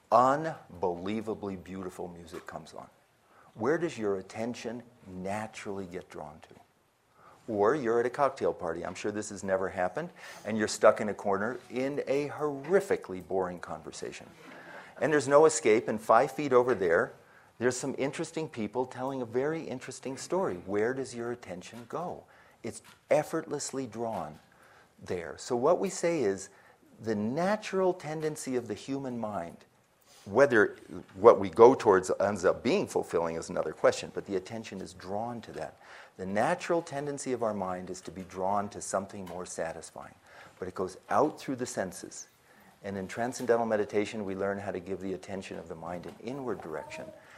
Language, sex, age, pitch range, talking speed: English, male, 50-69, 95-135 Hz, 165 wpm